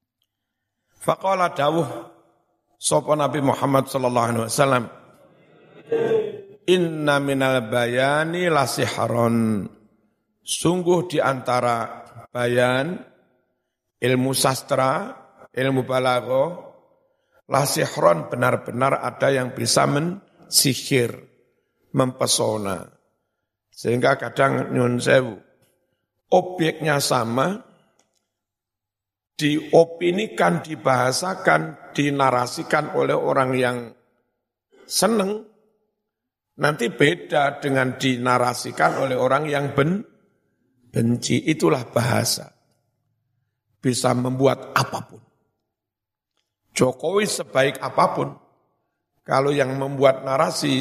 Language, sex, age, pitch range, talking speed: Indonesian, male, 60-79, 120-155 Hz, 70 wpm